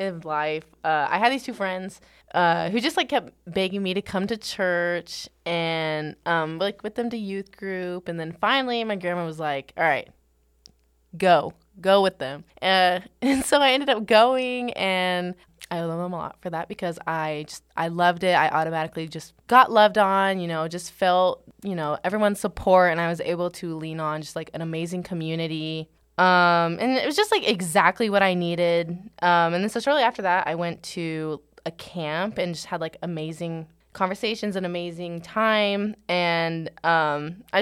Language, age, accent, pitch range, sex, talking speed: English, 20-39, American, 160-200 Hz, female, 195 wpm